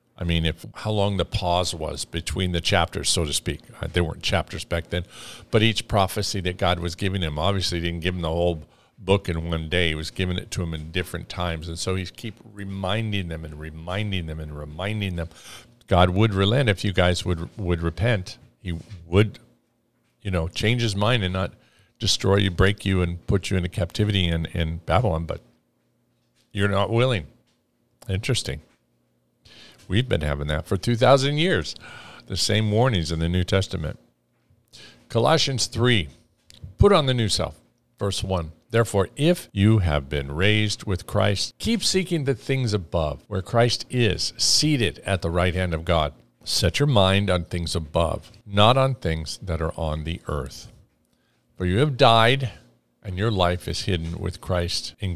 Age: 50-69